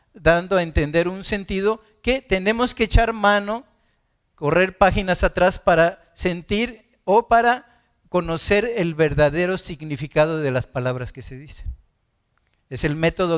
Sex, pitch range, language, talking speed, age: male, 150-205 Hz, Spanish, 135 wpm, 50-69